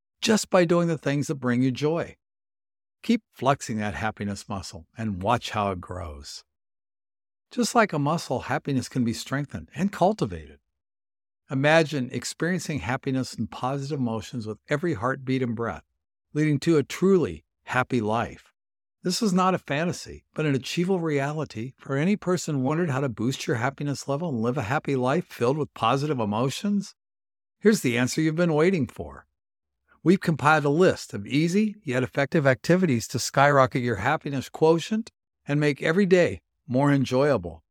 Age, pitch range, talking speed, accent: 60-79, 110-160 Hz, 160 wpm, American